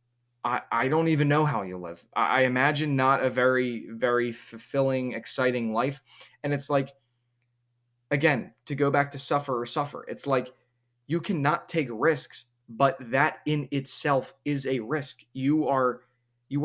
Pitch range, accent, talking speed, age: 120-140 Hz, American, 155 wpm, 20-39